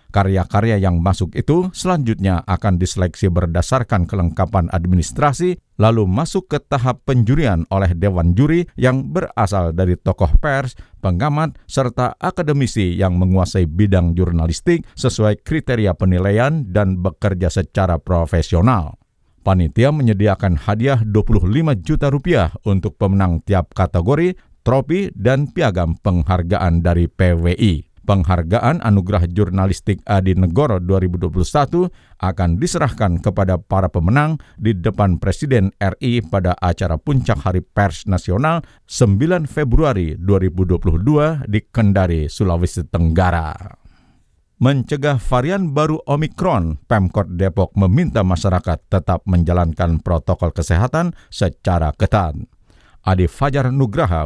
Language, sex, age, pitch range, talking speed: Indonesian, male, 50-69, 90-125 Hz, 110 wpm